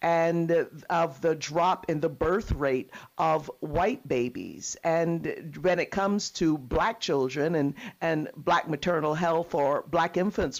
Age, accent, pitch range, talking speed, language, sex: 50-69, American, 160-190 Hz, 145 wpm, English, female